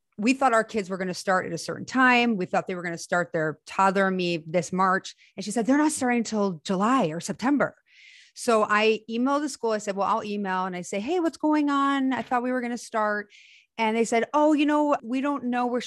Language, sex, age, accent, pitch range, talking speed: English, female, 30-49, American, 190-240 Hz, 255 wpm